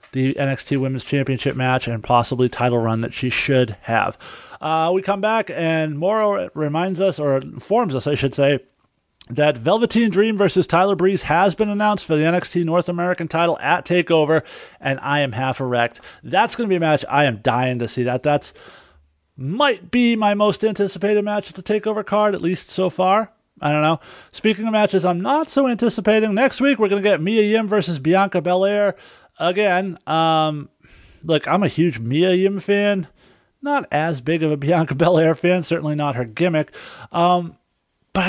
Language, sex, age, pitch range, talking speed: English, male, 30-49, 140-195 Hz, 190 wpm